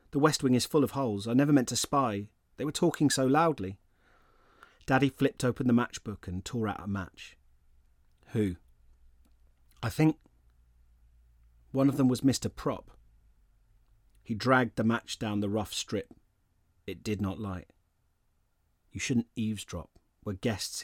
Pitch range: 90-120 Hz